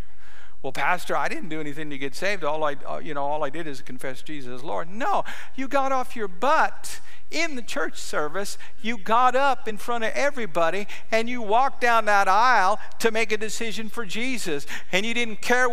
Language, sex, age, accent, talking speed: English, male, 50-69, American, 205 wpm